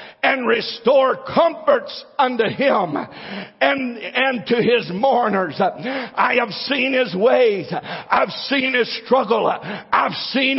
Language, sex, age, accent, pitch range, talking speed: English, male, 50-69, American, 255-310 Hz, 120 wpm